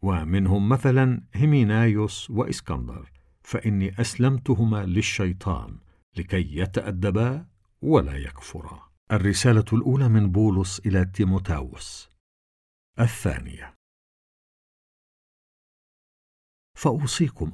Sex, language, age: male, Arabic, 50-69